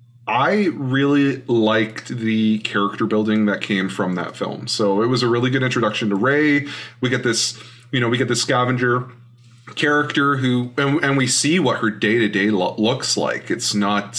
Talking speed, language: 180 wpm, English